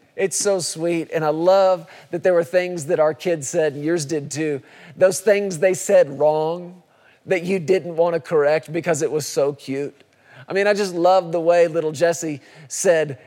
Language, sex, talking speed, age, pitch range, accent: English, male, 200 wpm, 40-59, 150-185 Hz, American